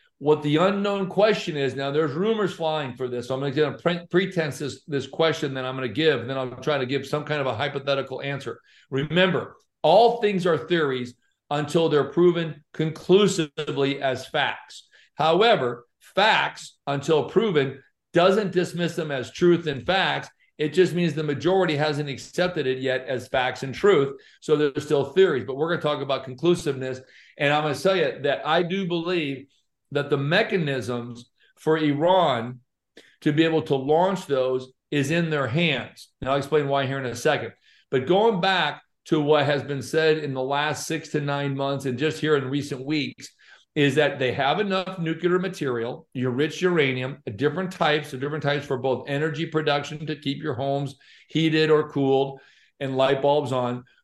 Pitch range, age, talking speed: 135-165 Hz, 50-69, 185 wpm